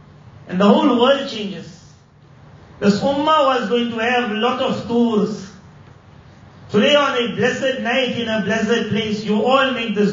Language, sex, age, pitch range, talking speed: Indonesian, male, 40-59, 205-250 Hz, 170 wpm